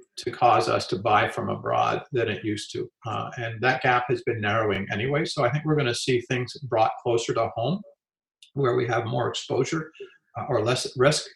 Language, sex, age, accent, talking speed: English, male, 50-69, American, 210 wpm